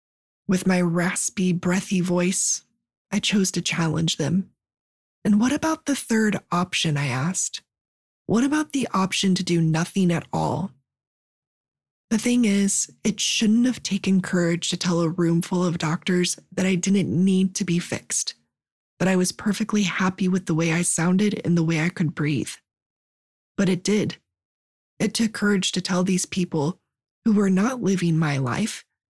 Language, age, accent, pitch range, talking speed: English, 20-39, American, 165-200 Hz, 165 wpm